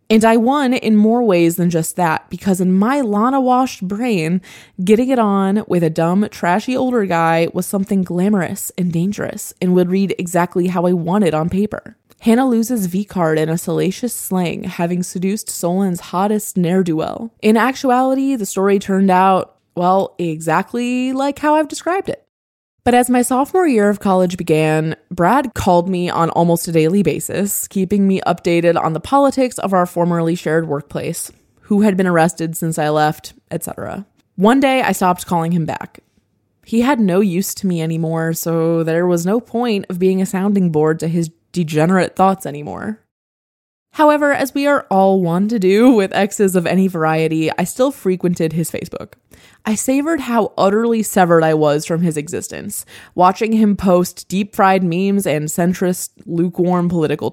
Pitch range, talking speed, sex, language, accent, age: 165-215 Hz, 170 wpm, female, English, American, 20-39